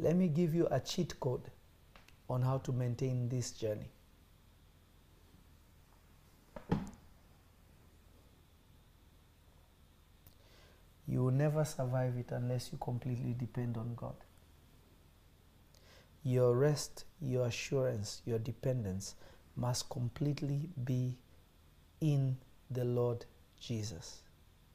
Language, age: English, 50-69